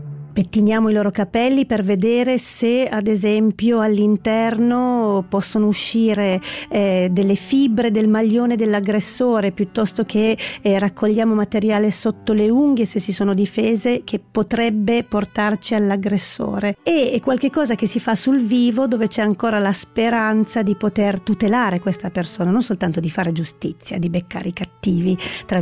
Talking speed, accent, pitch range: 145 wpm, native, 190-225 Hz